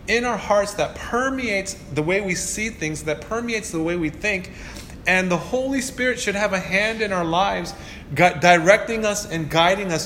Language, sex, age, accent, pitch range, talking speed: English, male, 30-49, American, 140-195 Hz, 190 wpm